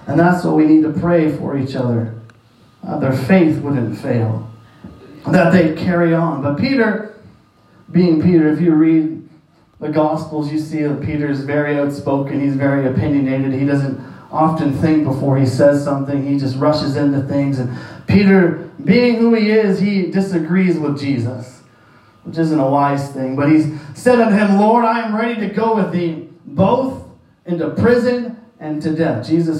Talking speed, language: 170 wpm, English